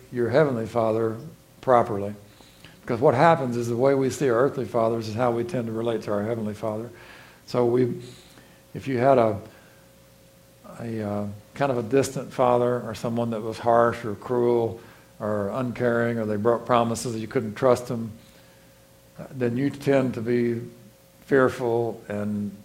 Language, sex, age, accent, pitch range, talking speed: English, male, 60-79, American, 110-135 Hz, 165 wpm